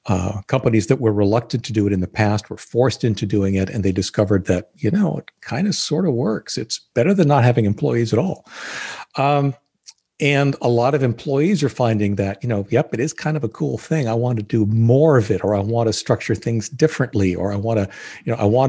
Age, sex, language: 50-69, male, English